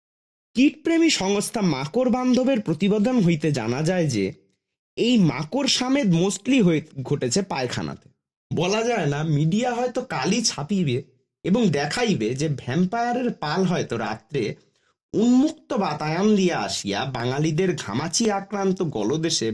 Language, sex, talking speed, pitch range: Bengali, male, 35 wpm, 140-230 Hz